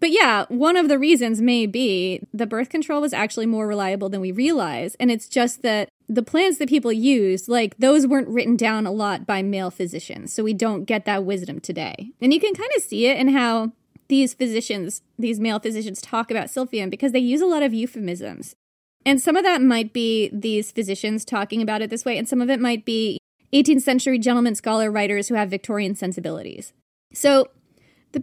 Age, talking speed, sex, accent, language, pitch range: 20-39, 210 wpm, female, American, English, 210-275 Hz